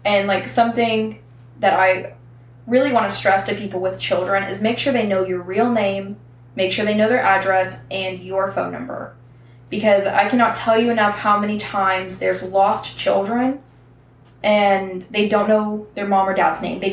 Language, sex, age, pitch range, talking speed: English, female, 10-29, 180-225 Hz, 185 wpm